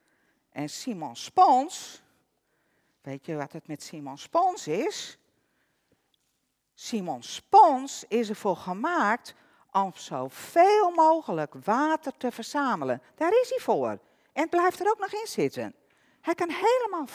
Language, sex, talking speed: Dutch, female, 130 wpm